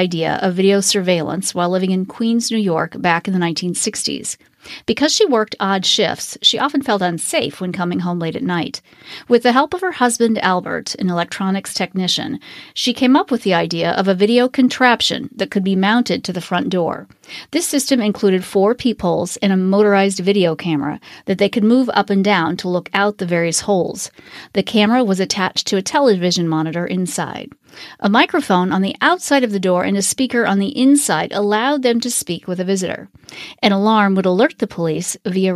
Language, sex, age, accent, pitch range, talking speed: English, female, 40-59, American, 180-235 Hz, 195 wpm